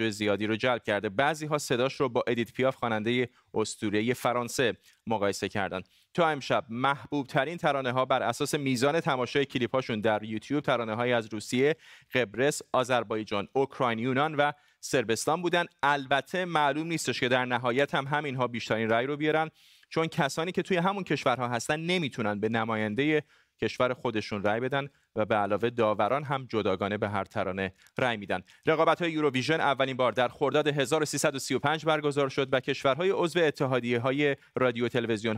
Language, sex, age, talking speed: Persian, male, 30-49, 160 wpm